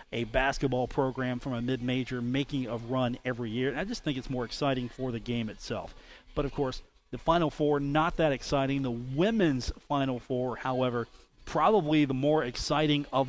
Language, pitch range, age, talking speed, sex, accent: English, 125-150 Hz, 40-59, 185 wpm, male, American